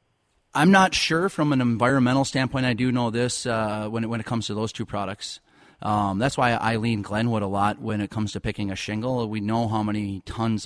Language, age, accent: English, 30-49, American